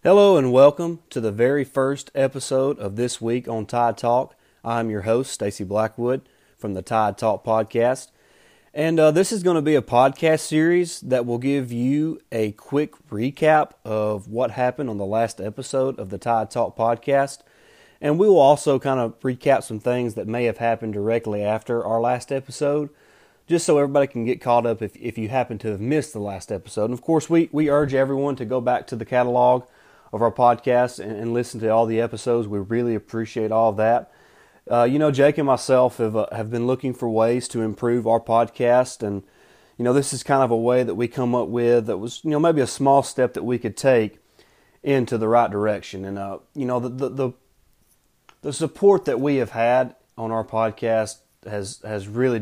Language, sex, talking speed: English, male, 210 wpm